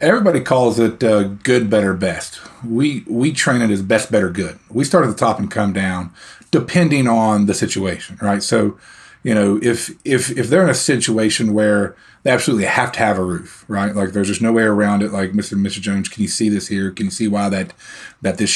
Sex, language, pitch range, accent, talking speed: male, English, 100-125 Hz, American, 225 wpm